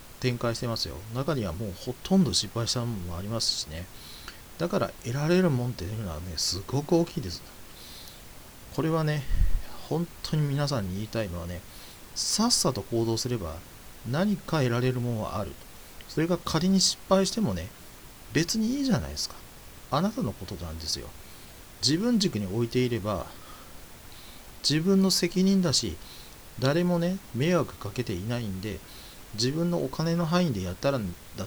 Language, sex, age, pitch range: Japanese, male, 40-59, 95-140 Hz